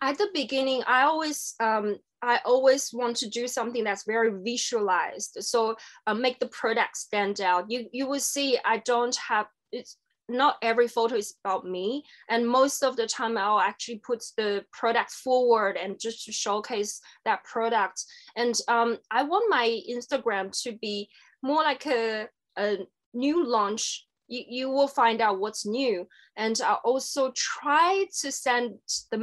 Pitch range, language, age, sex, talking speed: 205-250 Hz, English, 20-39, female, 165 wpm